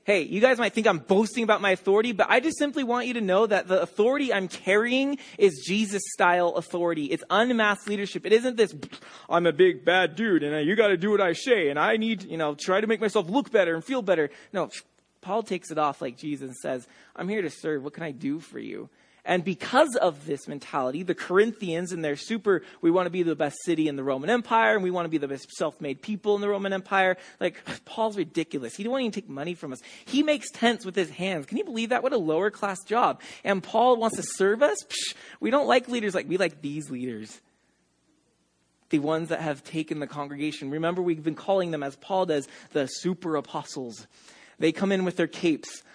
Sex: male